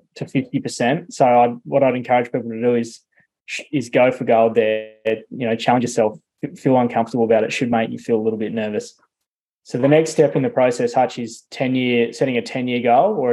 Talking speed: 215 wpm